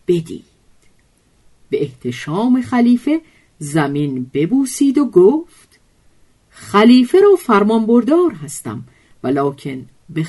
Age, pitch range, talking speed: 50-69, 150-240 Hz, 85 wpm